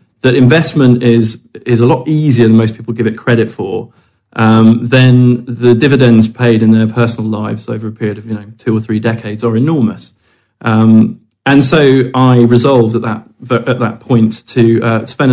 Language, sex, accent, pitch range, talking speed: English, male, British, 110-130 Hz, 190 wpm